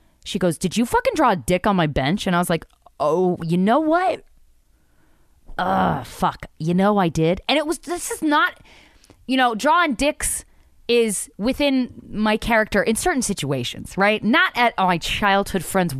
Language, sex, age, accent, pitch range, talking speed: English, female, 20-39, American, 145-220 Hz, 185 wpm